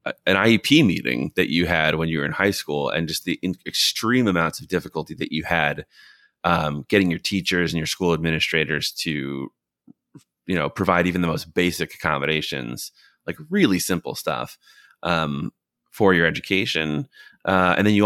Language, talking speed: English, 175 wpm